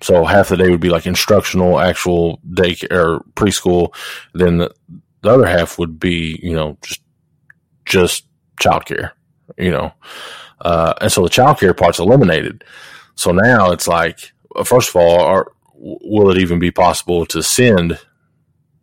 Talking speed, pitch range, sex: 160 wpm, 85-100 Hz, male